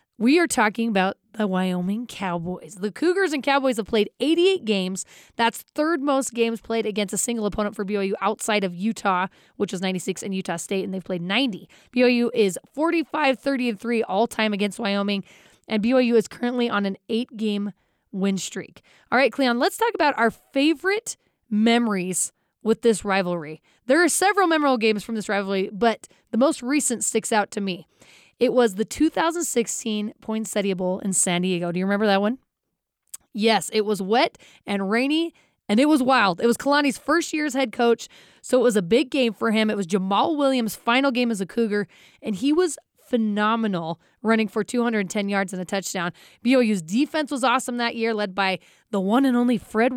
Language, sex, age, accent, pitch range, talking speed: English, female, 20-39, American, 200-255 Hz, 185 wpm